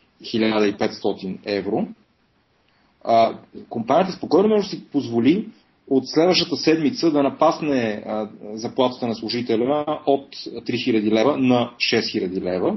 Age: 30-49